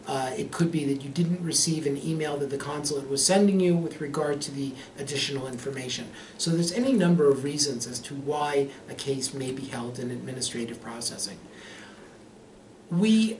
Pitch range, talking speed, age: 140-165 Hz, 180 wpm, 40-59